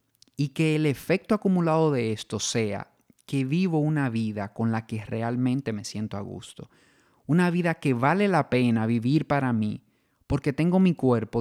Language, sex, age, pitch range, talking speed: Spanish, male, 30-49, 115-145 Hz, 175 wpm